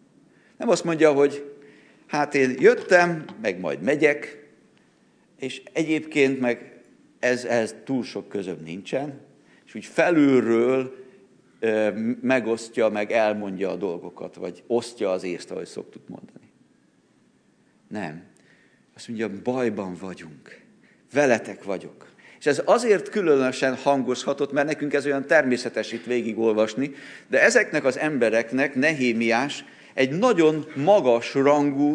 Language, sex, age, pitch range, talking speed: Hungarian, male, 50-69, 120-155 Hz, 115 wpm